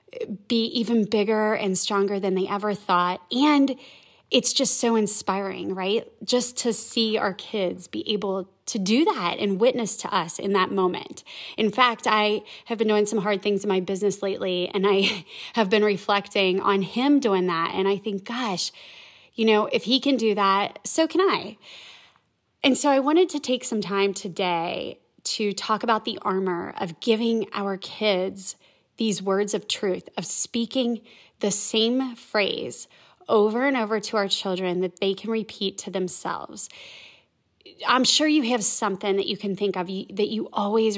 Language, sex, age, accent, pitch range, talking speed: English, female, 20-39, American, 195-230 Hz, 175 wpm